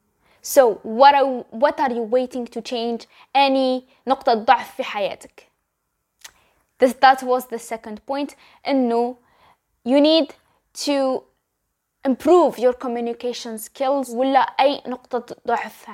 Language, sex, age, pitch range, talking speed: English, female, 10-29, 240-295 Hz, 125 wpm